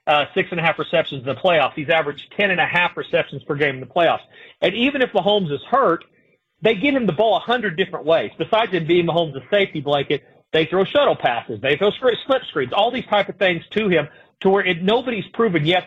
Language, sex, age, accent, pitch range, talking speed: English, male, 40-59, American, 160-210 Hz, 220 wpm